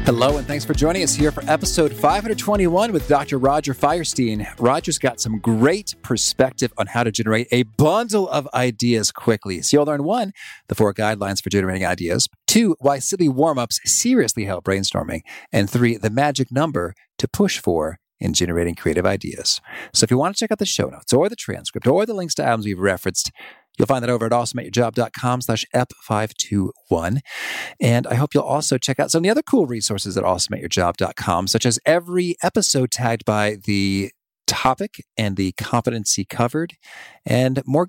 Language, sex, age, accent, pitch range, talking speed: English, male, 40-59, American, 105-150 Hz, 180 wpm